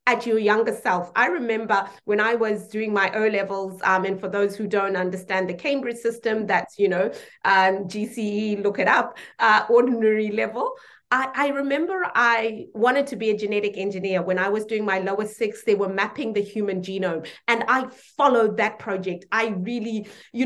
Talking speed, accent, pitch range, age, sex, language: 190 wpm, South African, 190-230 Hz, 30-49, female, English